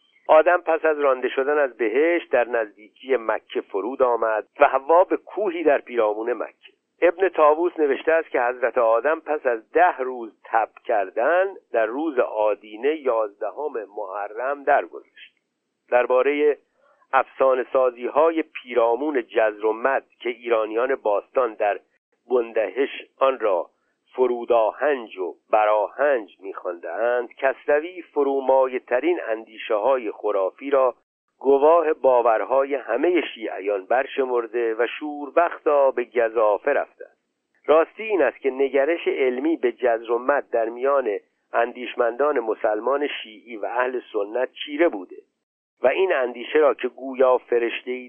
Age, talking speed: 50-69, 120 wpm